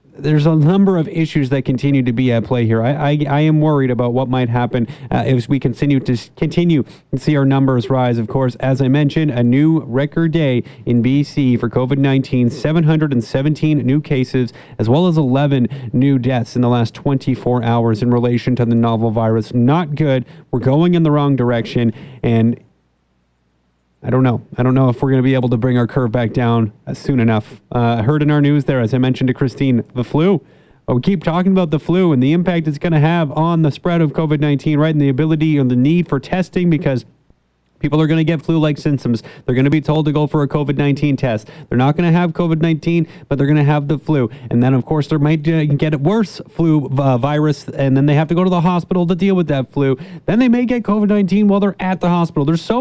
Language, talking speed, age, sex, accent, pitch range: English, 230 wpm, 30-49, male, American, 130-165 Hz